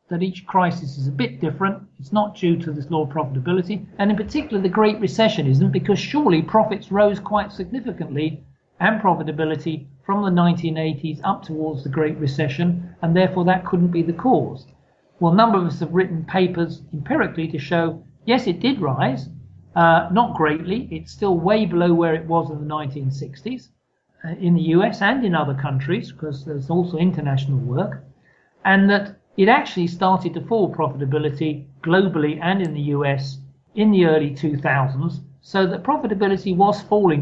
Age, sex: 50-69, male